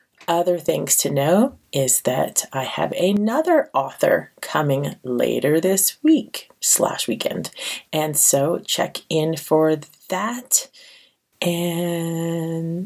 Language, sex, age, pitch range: English, female, 30-49, 145-185 Hz